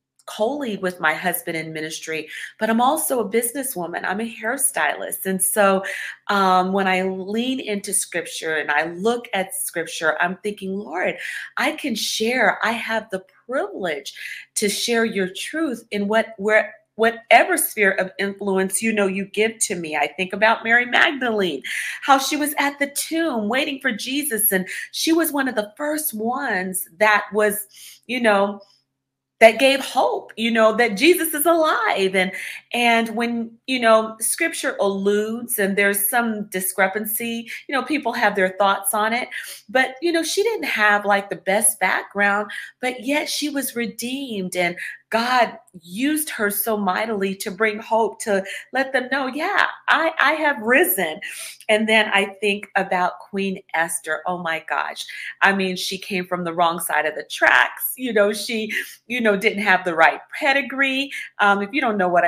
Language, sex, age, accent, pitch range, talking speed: English, female, 40-59, American, 190-245 Hz, 170 wpm